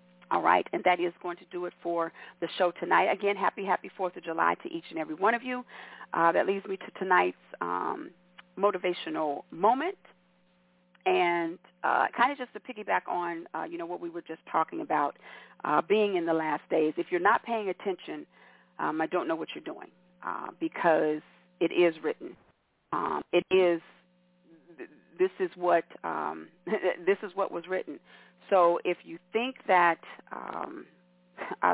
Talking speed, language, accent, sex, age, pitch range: 180 wpm, English, American, female, 40-59, 170-210 Hz